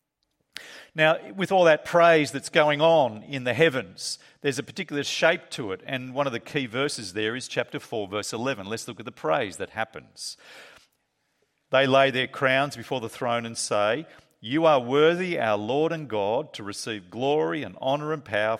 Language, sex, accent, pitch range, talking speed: English, male, Australian, 110-150 Hz, 190 wpm